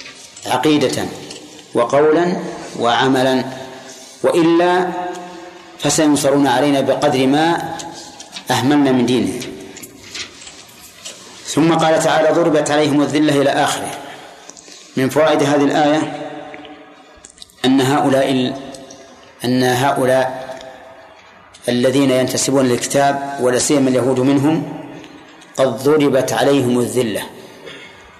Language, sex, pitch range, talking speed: Arabic, male, 130-150 Hz, 85 wpm